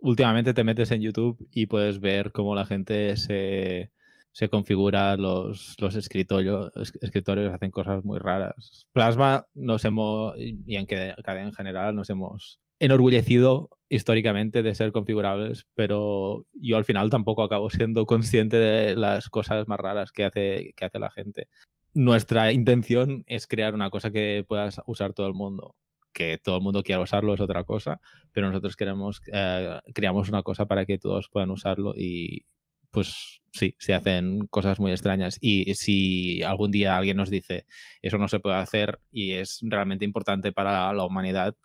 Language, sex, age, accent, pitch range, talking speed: Spanish, male, 20-39, Spanish, 95-110 Hz, 165 wpm